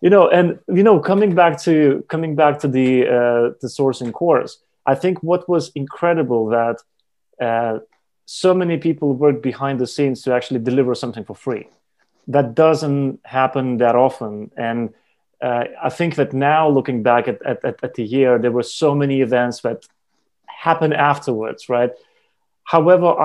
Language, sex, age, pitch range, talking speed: English, male, 30-49, 125-155 Hz, 165 wpm